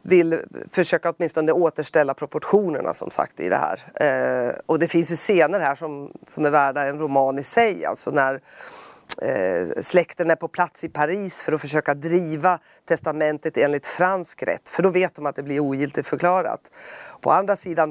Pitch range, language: 155-190 Hz, Swedish